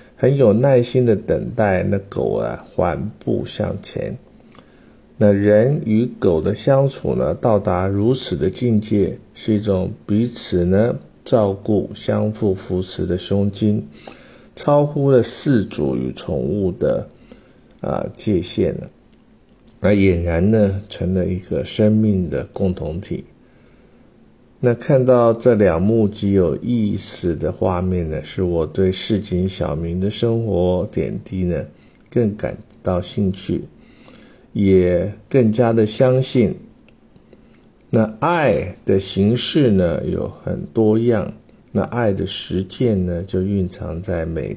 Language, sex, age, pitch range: Chinese, male, 50-69, 90-110 Hz